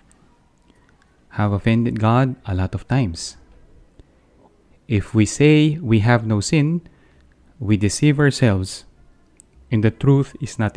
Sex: male